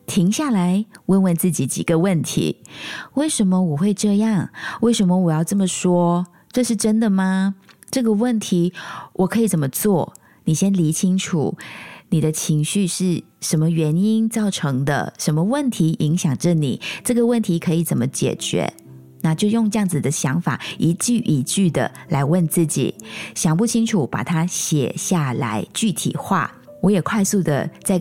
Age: 20-39